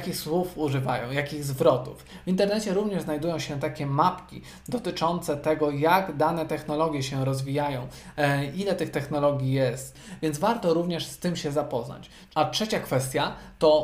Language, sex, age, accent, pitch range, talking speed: Polish, male, 20-39, native, 145-165 Hz, 145 wpm